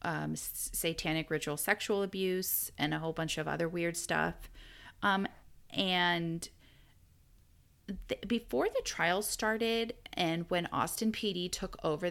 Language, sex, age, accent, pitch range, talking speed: English, female, 30-49, American, 160-205 Hz, 125 wpm